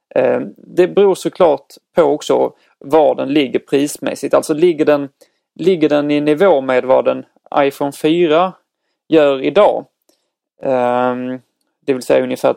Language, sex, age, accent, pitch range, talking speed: Swedish, male, 30-49, native, 130-160 Hz, 125 wpm